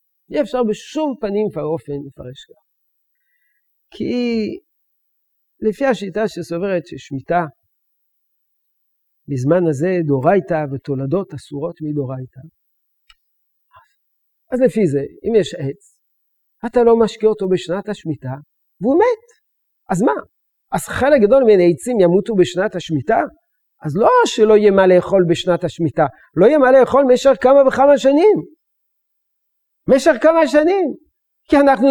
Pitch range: 165-270 Hz